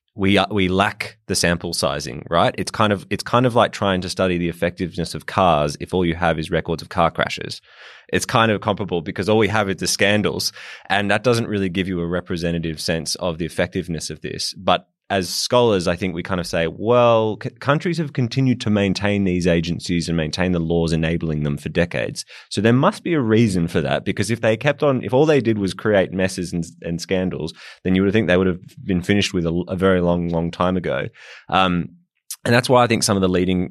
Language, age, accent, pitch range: English, 20-39, Australian, 85-100 Hz